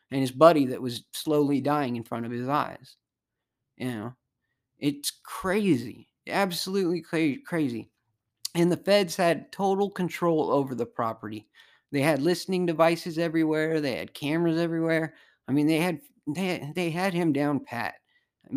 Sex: male